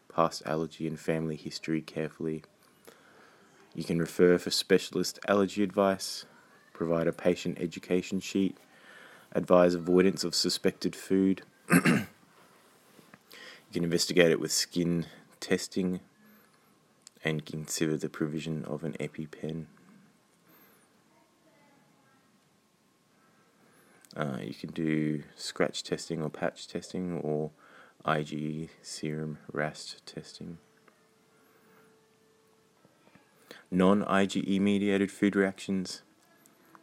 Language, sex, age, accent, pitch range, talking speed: English, male, 20-39, Australian, 80-90 Hz, 90 wpm